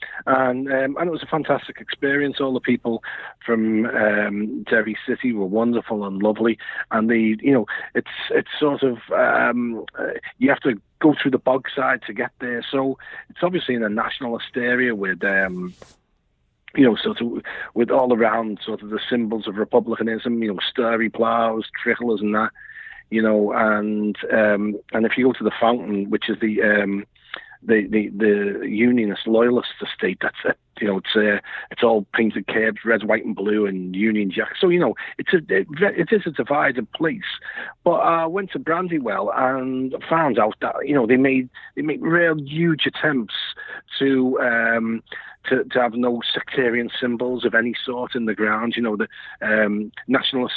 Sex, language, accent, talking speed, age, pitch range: male, English, British, 185 wpm, 40-59, 110-130 Hz